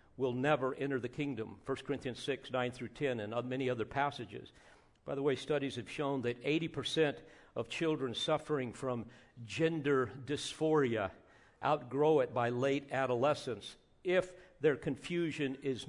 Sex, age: male, 50-69